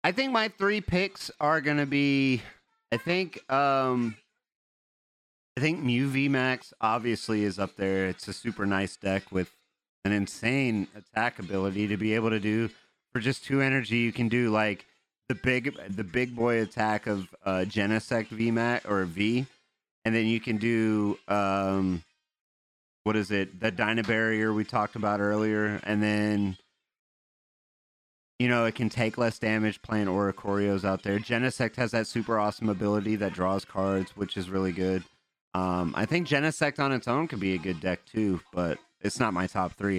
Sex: male